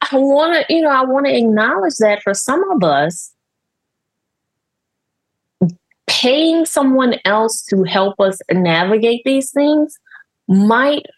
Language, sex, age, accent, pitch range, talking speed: English, female, 30-49, American, 180-255 Hz, 130 wpm